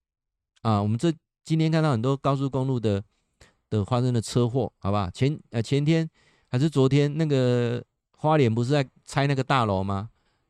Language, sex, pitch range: Chinese, male, 100-135 Hz